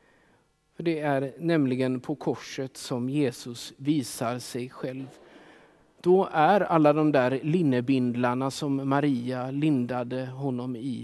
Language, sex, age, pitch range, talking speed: Swedish, male, 50-69, 125-155 Hz, 120 wpm